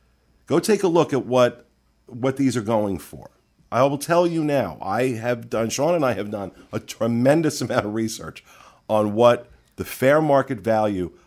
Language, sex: English, male